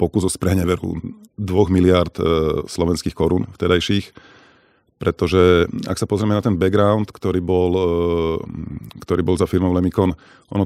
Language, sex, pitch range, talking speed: Slovak, male, 85-95 Hz, 140 wpm